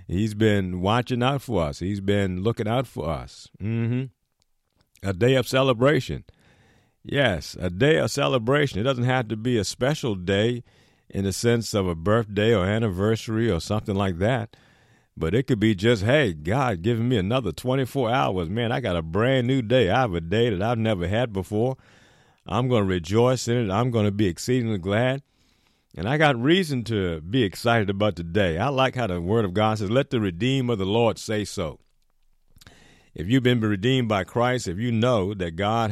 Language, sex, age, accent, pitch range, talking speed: English, male, 50-69, American, 95-125 Hz, 200 wpm